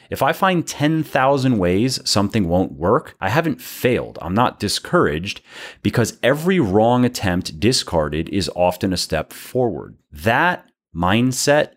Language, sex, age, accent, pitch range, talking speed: English, male, 30-49, American, 85-120 Hz, 135 wpm